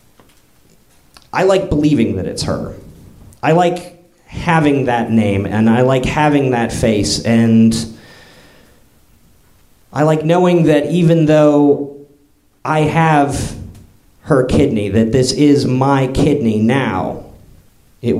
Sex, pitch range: male, 105-130 Hz